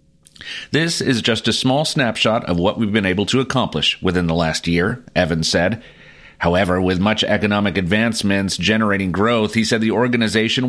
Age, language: 40-59, English